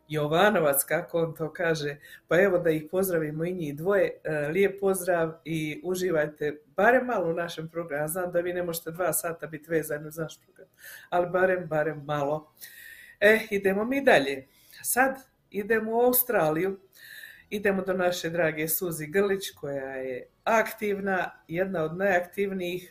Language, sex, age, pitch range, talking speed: Croatian, female, 50-69, 155-190 Hz, 150 wpm